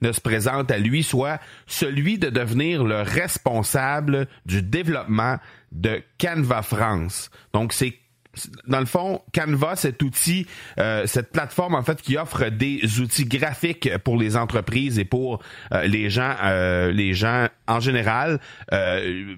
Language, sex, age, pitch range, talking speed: French, male, 40-59, 110-140 Hz, 150 wpm